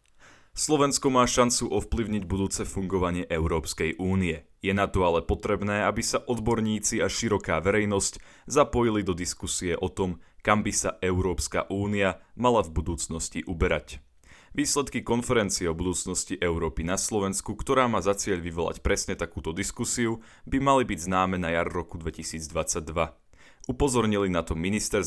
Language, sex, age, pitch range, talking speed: Slovak, male, 30-49, 85-110 Hz, 145 wpm